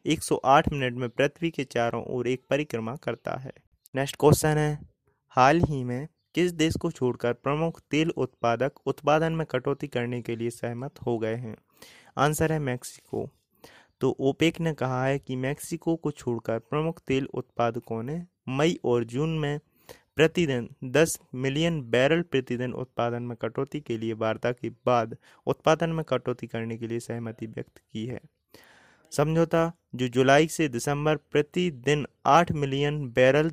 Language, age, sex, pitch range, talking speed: Hindi, 20-39, male, 120-155 Hz, 155 wpm